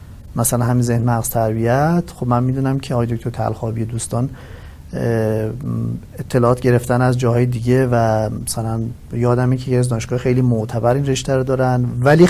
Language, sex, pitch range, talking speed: Persian, male, 115-130 Hz, 140 wpm